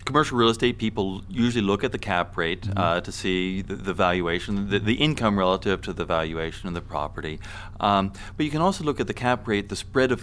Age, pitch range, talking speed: 40-59, 95-115 Hz, 230 wpm